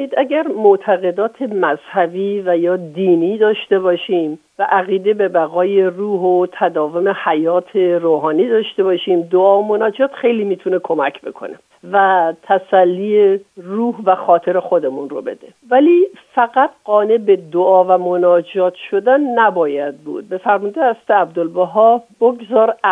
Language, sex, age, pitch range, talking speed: Persian, female, 50-69, 180-230 Hz, 130 wpm